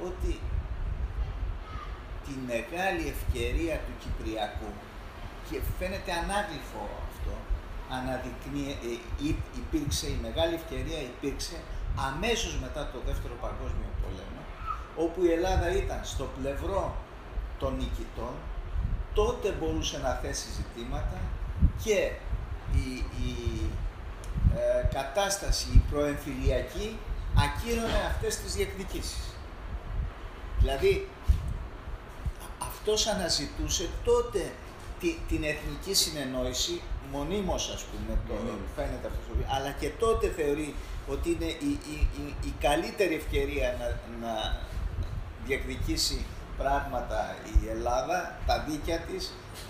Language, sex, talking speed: Greek, male, 100 wpm